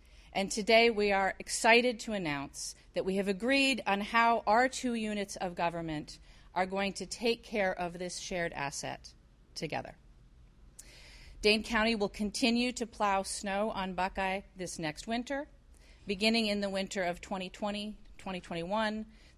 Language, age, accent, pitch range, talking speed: English, 40-59, American, 165-220 Hz, 140 wpm